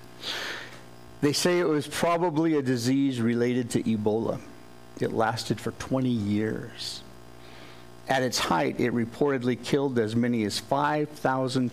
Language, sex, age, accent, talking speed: English, male, 60-79, American, 130 wpm